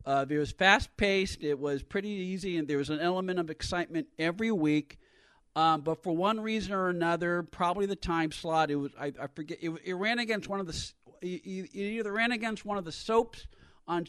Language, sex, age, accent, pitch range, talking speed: English, male, 50-69, American, 160-195 Hz, 210 wpm